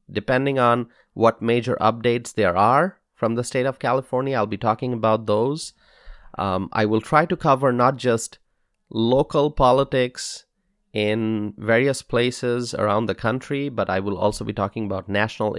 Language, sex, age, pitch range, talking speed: English, male, 30-49, 100-125 Hz, 160 wpm